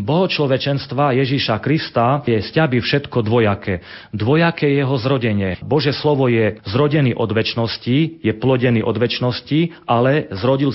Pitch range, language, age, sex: 115-140 Hz, Slovak, 40-59, male